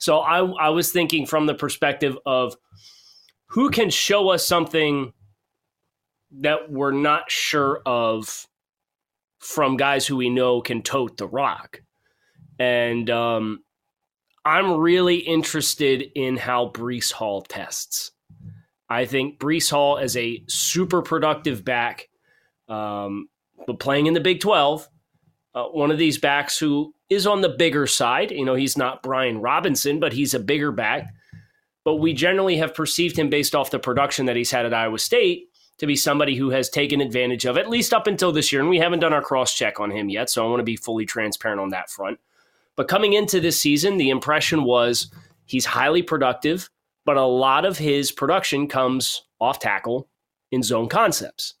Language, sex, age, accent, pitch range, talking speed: English, male, 30-49, American, 125-160 Hz, 175 wpm